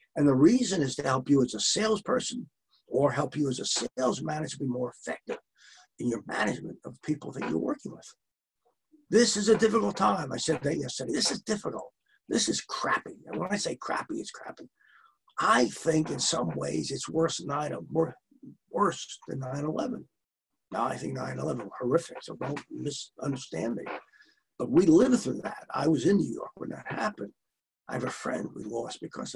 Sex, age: male, 50-69